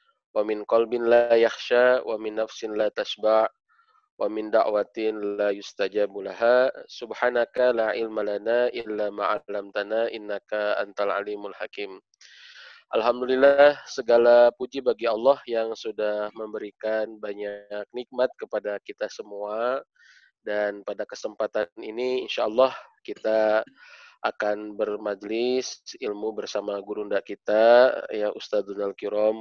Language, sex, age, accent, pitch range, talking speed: Indonesian, male, 20-39, native, 105-125 Hz, 110 wpm